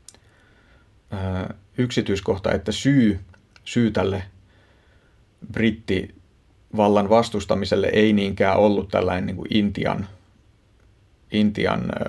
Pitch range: 95-110 Hz